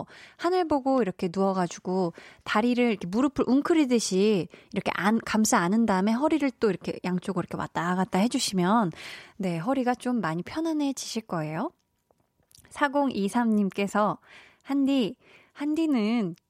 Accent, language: native, Korean